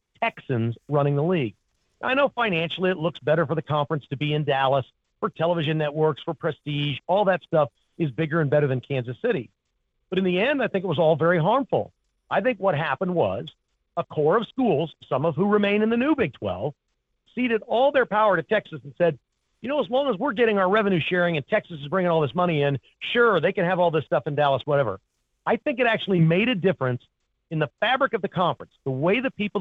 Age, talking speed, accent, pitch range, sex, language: 40-59, 230 wpm, American, 150-210 Hz, male, English